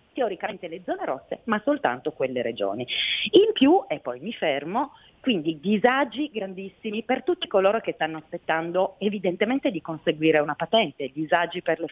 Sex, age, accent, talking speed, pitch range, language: female, 40-59, native, 155 wpm, 160-260 Hz, Italian